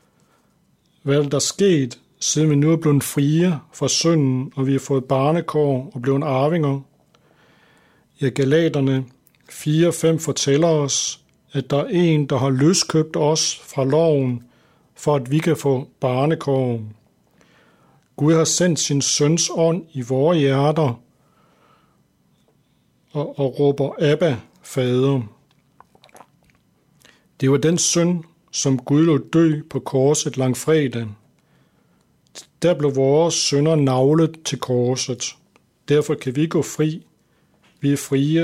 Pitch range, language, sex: 135-160 Hz, Danish, male